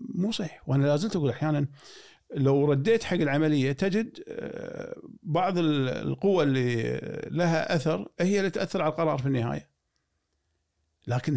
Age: 50-69